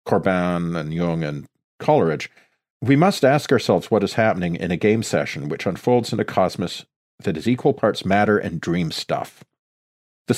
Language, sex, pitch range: English, male, 95-130 Hz